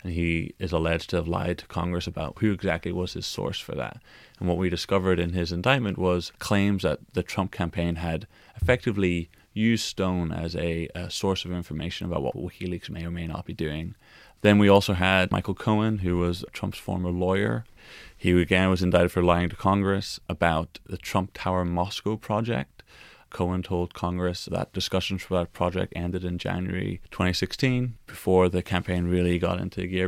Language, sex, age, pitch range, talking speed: English, male, 20-39, 85-100 Hz, 185 wpm